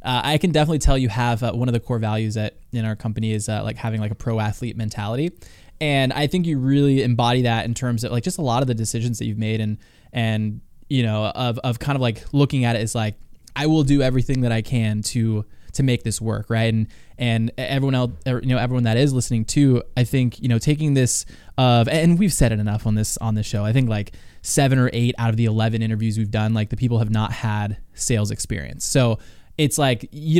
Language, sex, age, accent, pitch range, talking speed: English, male, 20-39, American, 110-135 Hz, 250 wpm